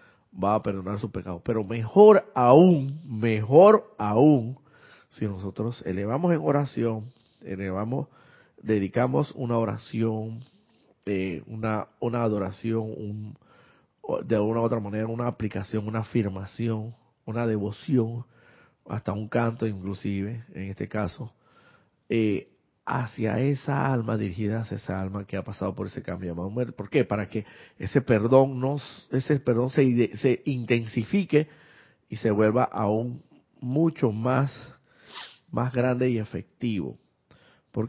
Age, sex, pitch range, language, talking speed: 40-59, male, 105-125 Hz, Spanish, 130 wpm